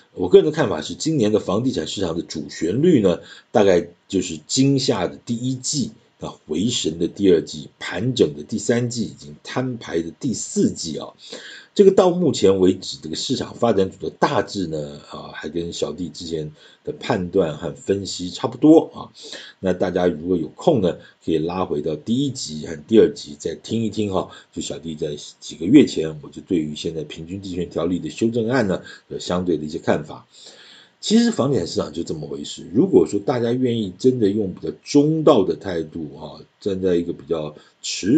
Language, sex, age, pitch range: Chinese, male, 50-69, 85-135 Hz